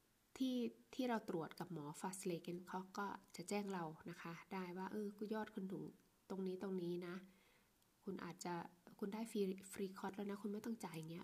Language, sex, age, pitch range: Thai, female, 20-39, 165-200 Hz